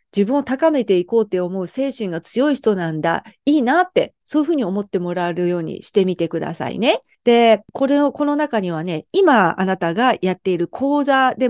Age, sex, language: 50-69, female, Japanese